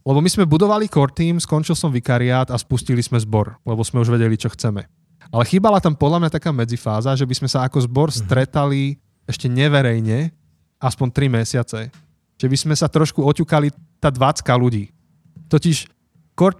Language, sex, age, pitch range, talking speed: Slovak, male, 20-39, 120-150 Hz, 175 wpm